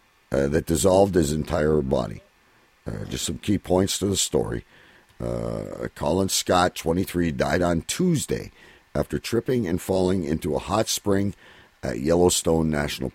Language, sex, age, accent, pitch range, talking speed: English, male, 50-69, American, 70-95 Hz, 140 wpm